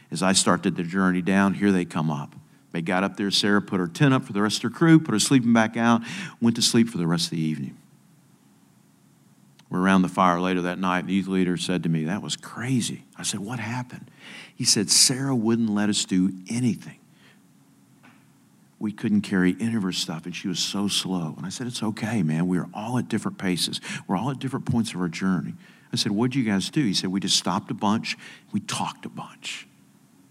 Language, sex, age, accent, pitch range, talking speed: English, male, 50-69, American, 90-115 Hz, 230 wpm